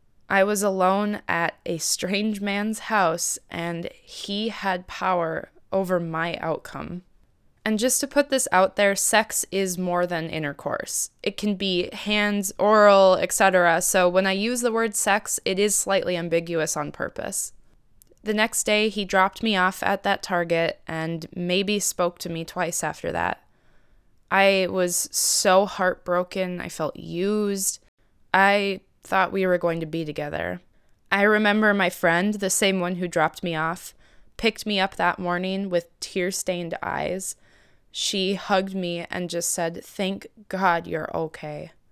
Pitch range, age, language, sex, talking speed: 180-215 Hz, 20-39, English, female, 155 wpm